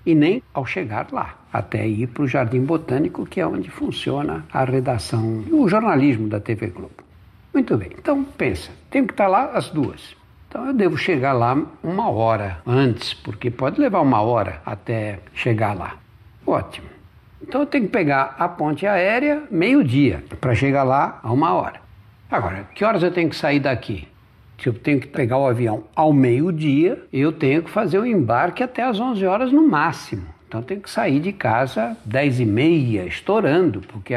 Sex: male